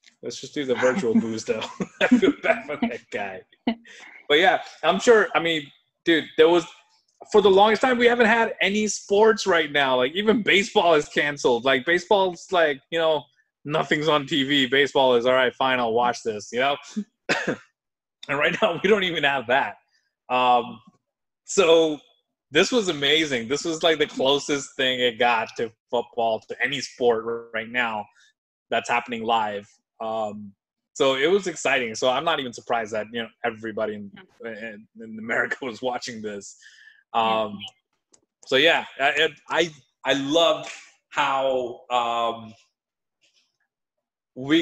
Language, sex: English, male